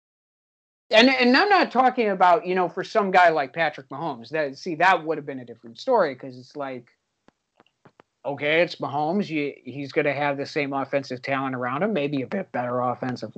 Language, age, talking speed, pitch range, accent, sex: English, 50-69, 195 wpm, 150-245 Hz, American, male